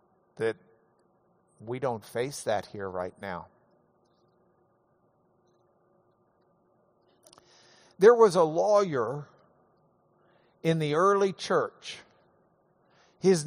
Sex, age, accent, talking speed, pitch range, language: male, 50-69, American, 75 wpm, 145-190 Hz, English